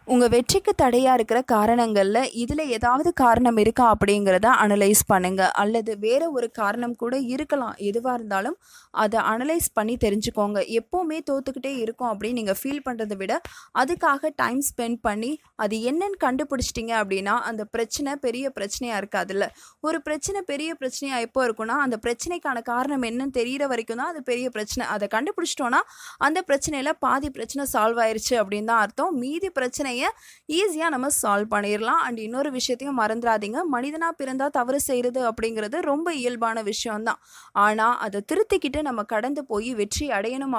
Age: 20-39